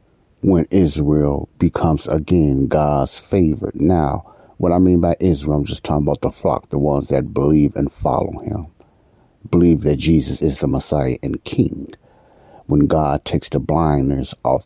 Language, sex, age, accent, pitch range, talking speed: English, male, 60-79, American, 75-90 Hz, 160 wpm